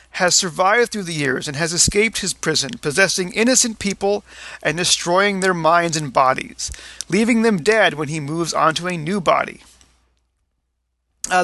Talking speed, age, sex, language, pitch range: 155 wpm, 40-59, male, English, 155-205 Hz